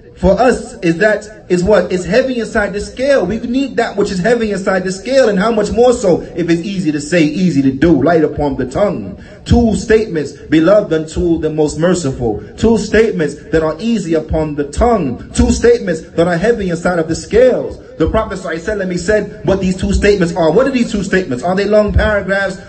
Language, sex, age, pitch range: English, male, 30-49, 150-210 Hz